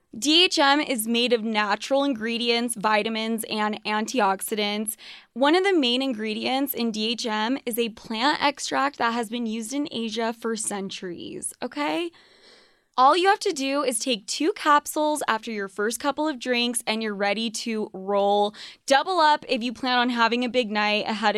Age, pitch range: 20-39, 220-275 Hz